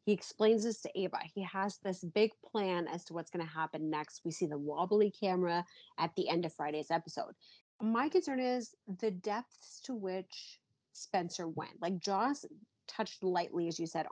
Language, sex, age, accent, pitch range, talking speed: English, female, 30-49, American, 175-230 Hz, 185 wpm